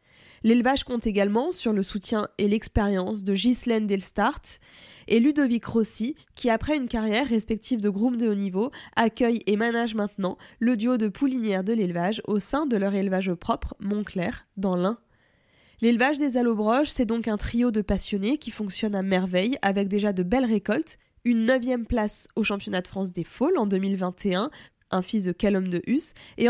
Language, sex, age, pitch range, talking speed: French, female, 20-39, 200-240 Hz, 180 wpm